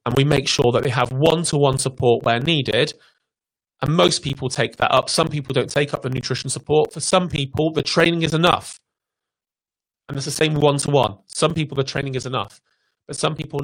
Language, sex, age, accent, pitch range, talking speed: English, male, 30-49, British, 125-150 Hz, 200 wpm